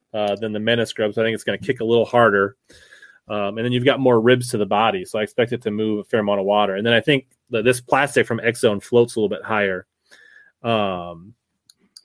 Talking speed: 255 wpm